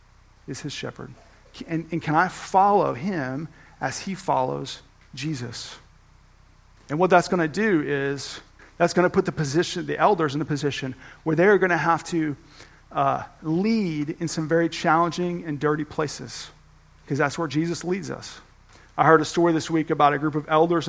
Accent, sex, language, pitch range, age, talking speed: American, male, English, 155-195 Hz, 40-59, 180 wpm